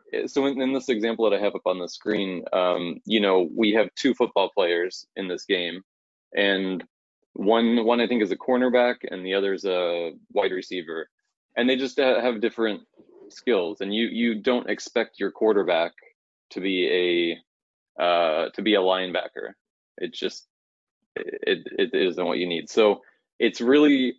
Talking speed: 170 wpm